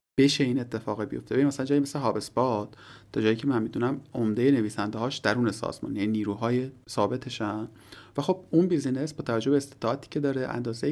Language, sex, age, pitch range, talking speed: Persian, male, 40-59, 110-145 Hz, 175 wpm